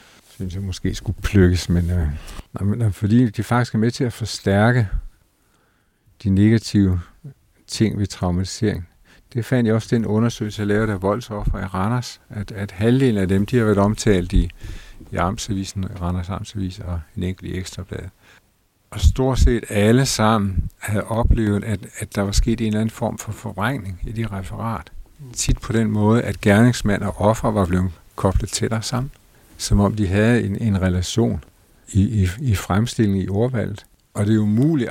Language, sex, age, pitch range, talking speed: Danish, male, 60-79, 95-115 Hz, 180 wpm